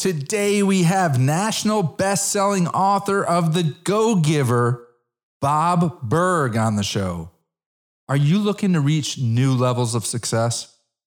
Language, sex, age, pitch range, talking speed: English, male, 40-59, 120-175 Hz, 125 wpm